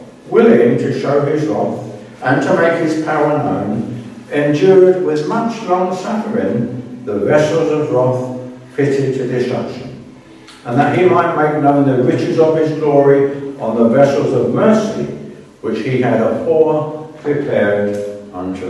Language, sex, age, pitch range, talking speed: English, male, 60-79, 115-150 Hz, 150 wpm